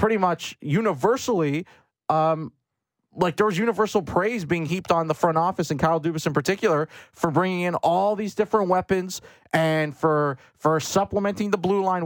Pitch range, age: 160-205 Hz, 30-49